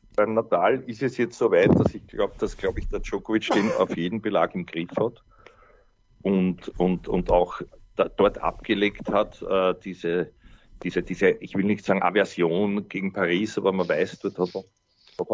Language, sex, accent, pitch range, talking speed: German, male, Austrian, 100-125 Hz, 190 wpm